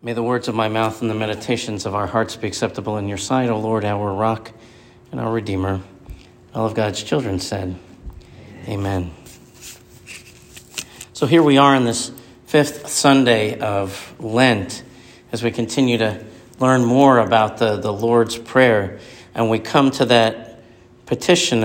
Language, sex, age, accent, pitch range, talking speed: English, male, 50-69, American, 110-130 Hz, 160 wpm